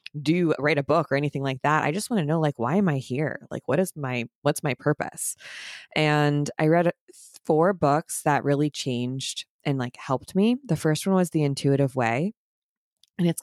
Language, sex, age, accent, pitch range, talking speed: English, female, 20-39, American, 135-160 Hz, 205 wpm